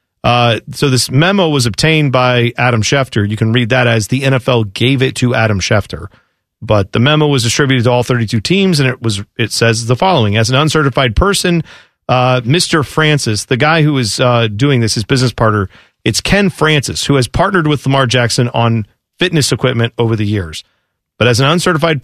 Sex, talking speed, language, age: male, 200 wpm, English, 40-59